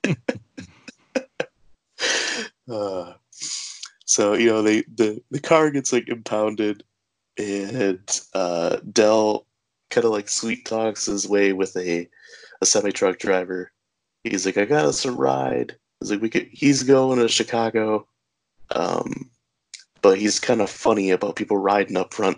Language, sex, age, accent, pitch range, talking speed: English, male, 20-39, American, 90-110 Hz, 140 wpm